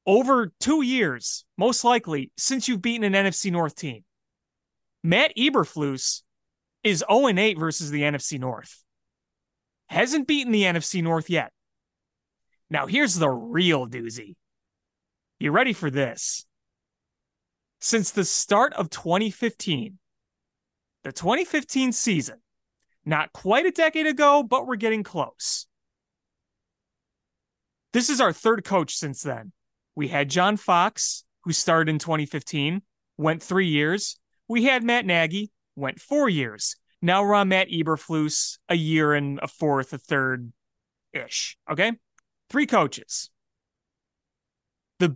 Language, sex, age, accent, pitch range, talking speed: English, male, 30-49, American, 145-225 Hz, 125 wpm